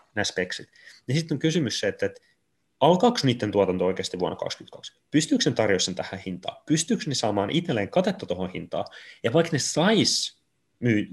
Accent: native